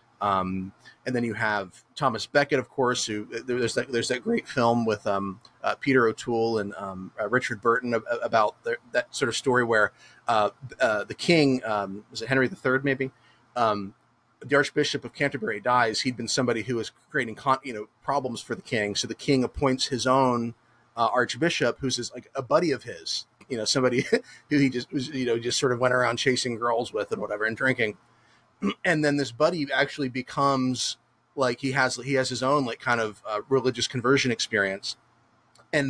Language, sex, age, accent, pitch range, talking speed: English, male, 30-49, American, 115-140 Hz, 200 wpm